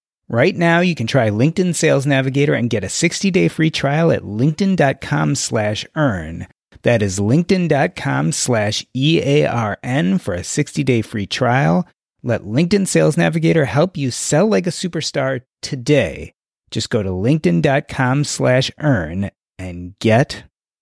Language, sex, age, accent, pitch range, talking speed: English, male, 30-49, American, 135-185 Hz, 135 wpm